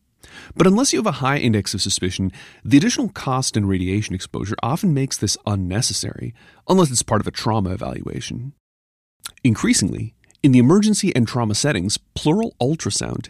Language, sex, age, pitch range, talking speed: English, male, 30-49, 95-135 Hz, 160 wpm